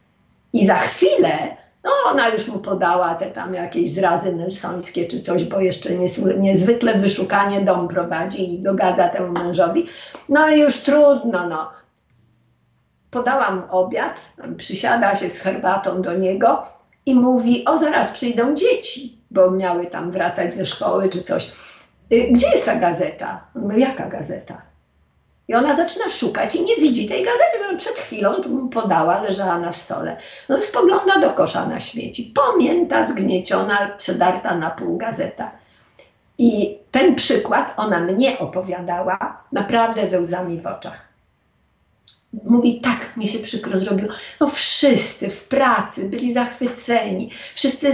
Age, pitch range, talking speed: 50-69, 185-255 Hz, 140 wpm